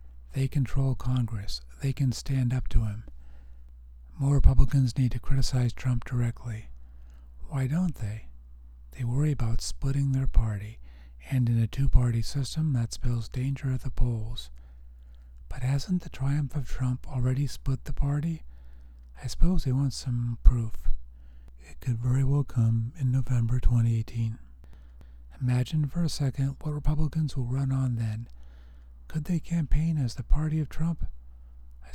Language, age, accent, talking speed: English, 40-59, American, 150 wpm